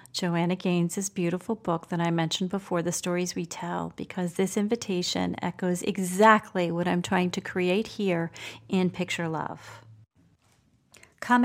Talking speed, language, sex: 140 wpm, English, female